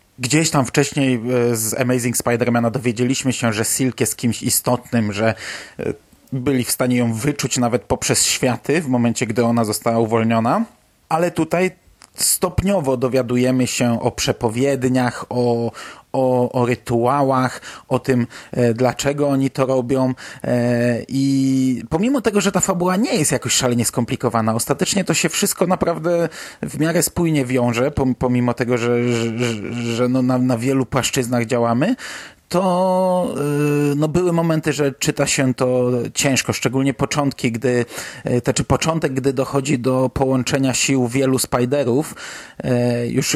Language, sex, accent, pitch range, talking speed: Polish, male, native, 125-145 Hz, 135 wpm